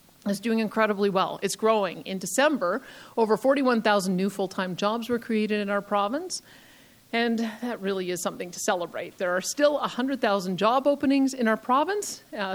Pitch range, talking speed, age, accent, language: 195-245 Hz, 165 wpm, 50-69, American, English